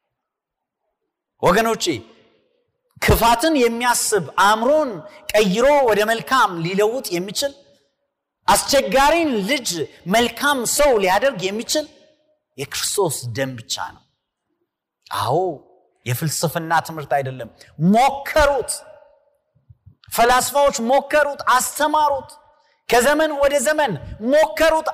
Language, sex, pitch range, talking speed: Amharic, male, 180-285 Hz, 70 wpm